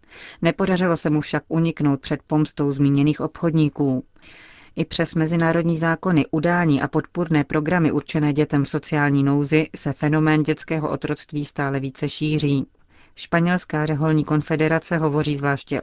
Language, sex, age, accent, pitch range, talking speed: Czech, female, 30-49, native, 145-160 Hz, 130 wpm